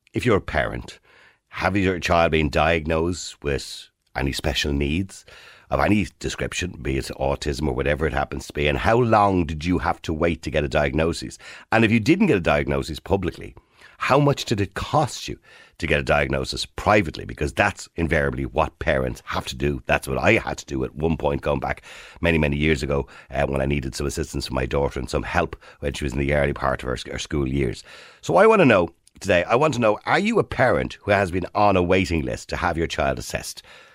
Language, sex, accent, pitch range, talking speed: English, male, Irish, 70-100 Hz, 225 wpm